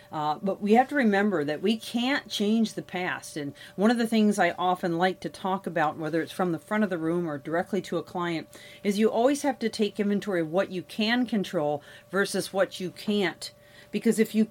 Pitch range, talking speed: 170-215 Hz, 230 wpm